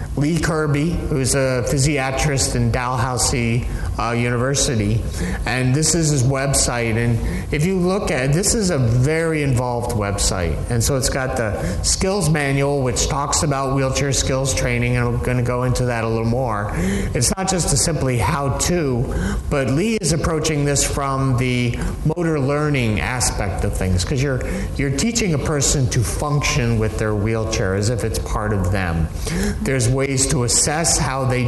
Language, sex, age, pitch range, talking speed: English, male, 30-49, 110-145 Hz, 170 wpm